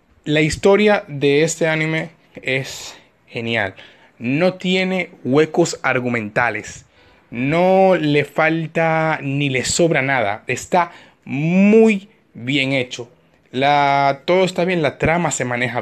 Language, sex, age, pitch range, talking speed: Spanish, male, 20-39, 125-160 Hz, 115 wpm